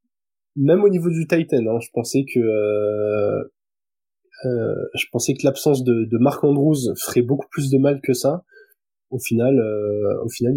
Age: 20-39